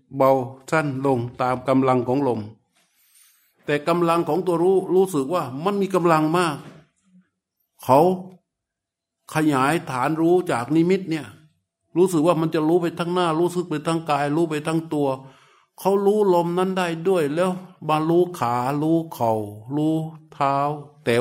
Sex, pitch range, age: male, 130-170 Hz, 60-79